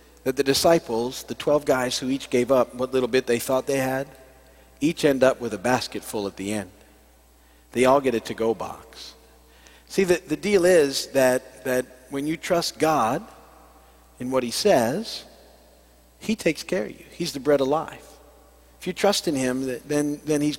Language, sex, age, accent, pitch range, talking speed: English, male, 50-69, American, 125-170 Hz, 190 wpm